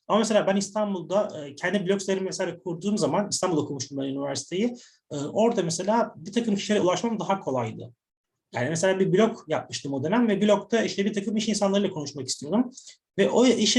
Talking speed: 175 wpm